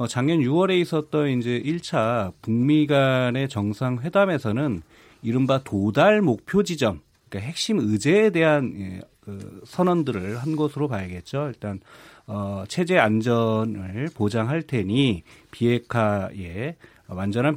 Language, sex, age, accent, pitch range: Korean, male, 40-59, native, 110-155 Hz